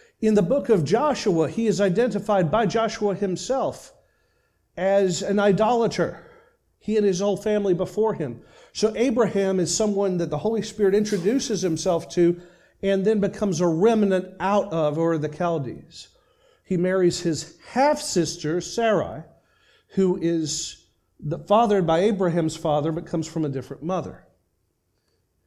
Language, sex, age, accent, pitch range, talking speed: English, male, 40-59, American, 175-215 Hz, 140 wpm